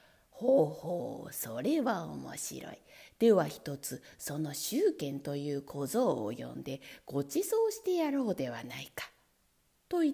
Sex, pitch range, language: female, 180-300 Hz, Japanese